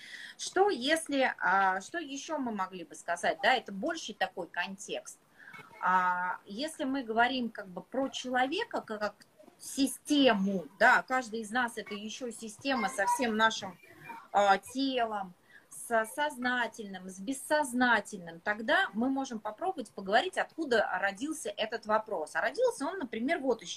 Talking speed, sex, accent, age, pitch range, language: 130 wpm, female, native, 20-39, 195-280 Hz, Russian